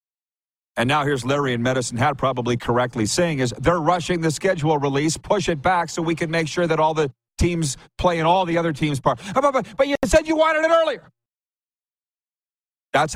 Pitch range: 115-155 Hz